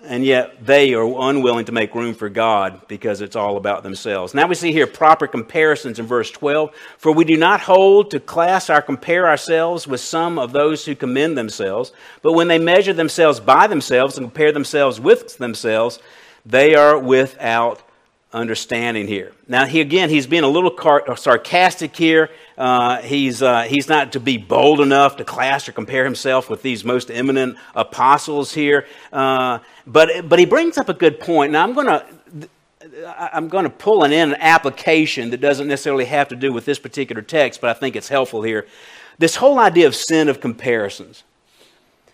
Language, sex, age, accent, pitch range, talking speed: English, male, 50-69, American, 125-165 Hz, 185 wpm